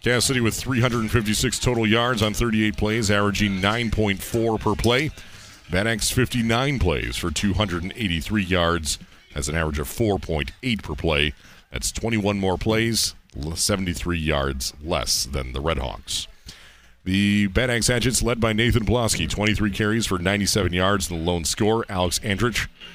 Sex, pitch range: male, 85-110 Hz